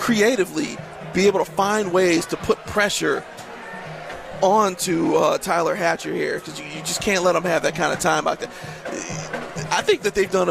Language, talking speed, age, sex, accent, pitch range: English, 190 wpm, 40-59, male, American, 175-220 Hz